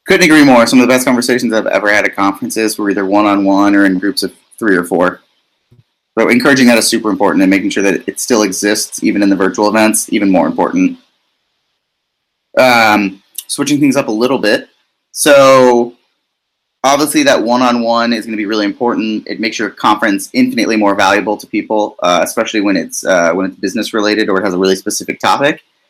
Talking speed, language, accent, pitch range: 195 wpm, English, American, 105-150 Hz